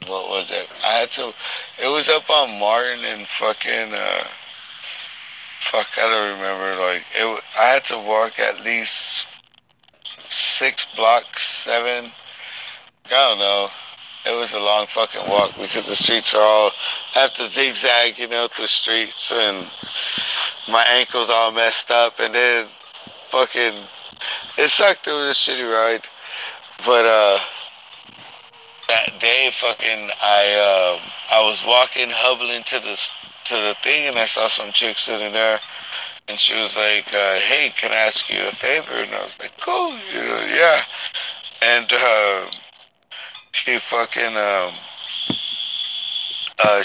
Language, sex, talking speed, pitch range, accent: English, male, 150 wpm, 105-125 Hz, American